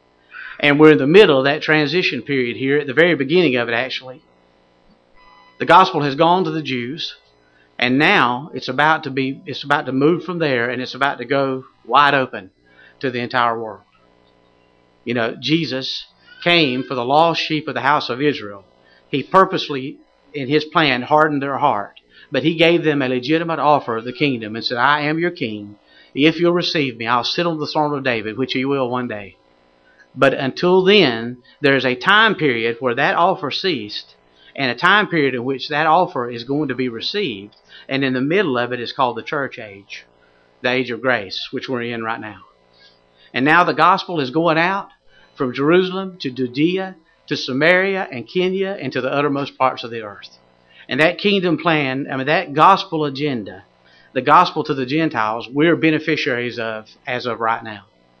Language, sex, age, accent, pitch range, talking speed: English, male, 50-69, American, 115-155 Hz, 195 wpm